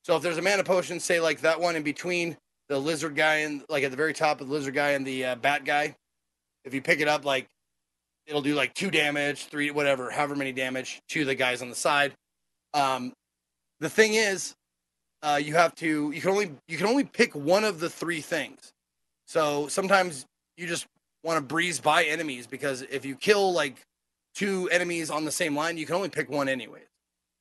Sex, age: male, 30-49